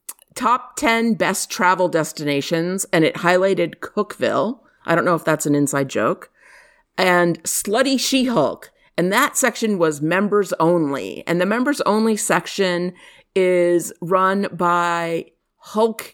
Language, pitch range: English, 160-195 Hz